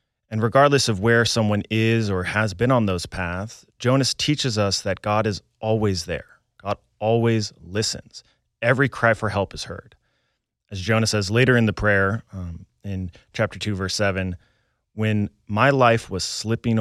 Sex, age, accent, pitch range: male, 30-49, American, 95-115 Hz